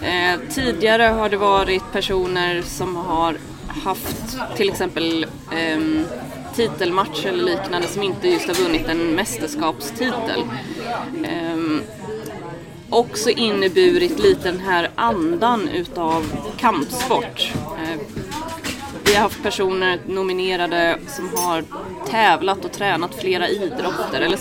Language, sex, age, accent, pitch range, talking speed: Swedish, female, 20-39, native, 175-225 Hz, 110 wpm